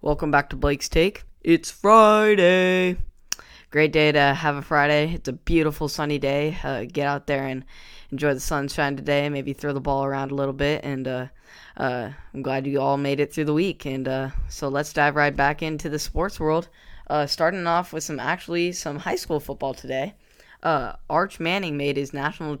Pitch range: 135-155 Hz